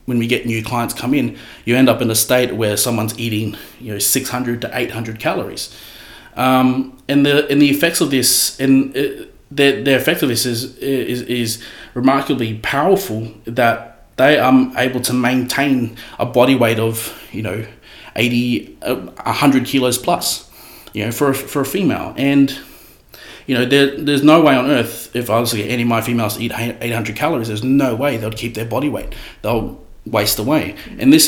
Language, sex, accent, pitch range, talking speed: English, male, Australian, 115-135 Hz, 200 wpm